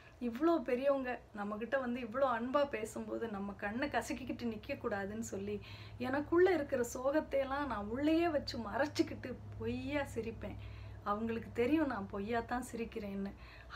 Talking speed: 120 wpm